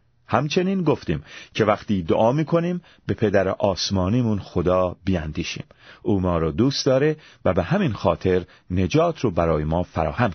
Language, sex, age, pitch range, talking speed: Persian, male, 30-49, 90-130 Hz, 145 wpm